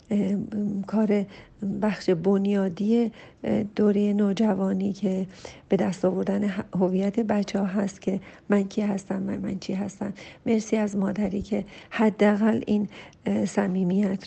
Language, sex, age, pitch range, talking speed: Persian, female, 50-69, 195-220 Hz, 120 wpm